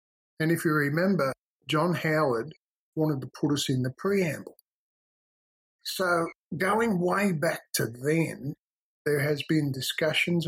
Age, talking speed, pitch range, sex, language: 50-69, 130 wpm, 135-170 Hz, male, English